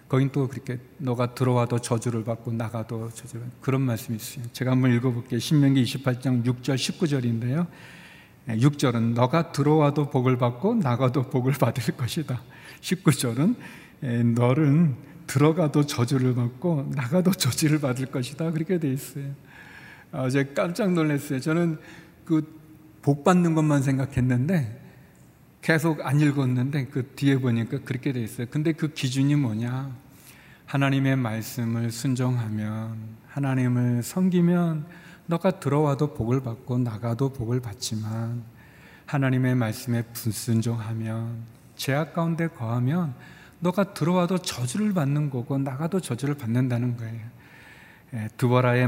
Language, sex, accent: Korean, male, native